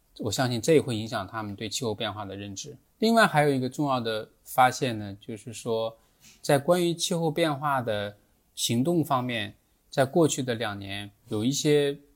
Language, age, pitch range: Chinese, 20-39, 110-140 Hz